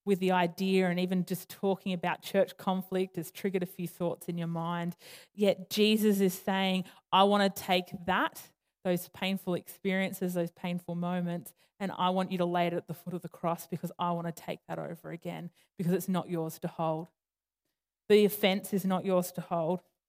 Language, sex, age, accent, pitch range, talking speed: English, female, 20-39, Australian, 170-190 Hz, 200 wpm